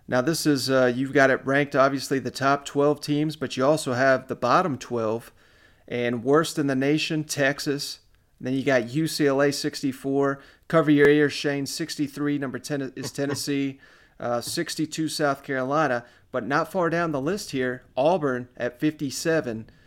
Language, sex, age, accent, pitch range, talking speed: English, male, 30-49, American, 130-155 Hz, 165 wpm